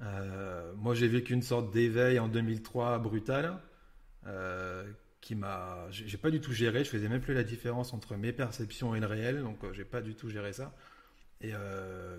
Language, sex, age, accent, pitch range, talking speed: French, male, 30-49, French, 105-125 Hz, 200 wpm